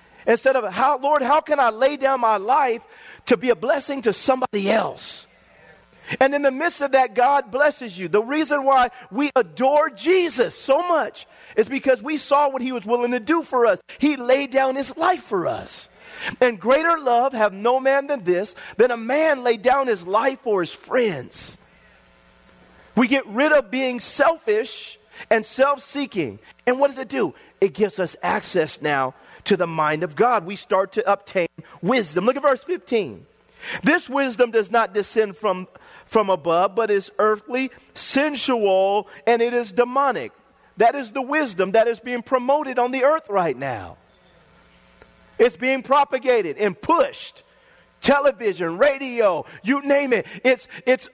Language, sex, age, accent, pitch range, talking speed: English, male, 40-59, American, 220-285 Hz, 170 wpm